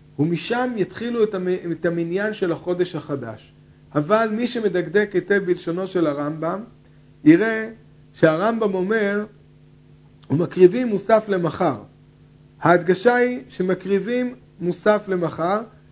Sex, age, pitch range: male, 50-69, 165-205 Hz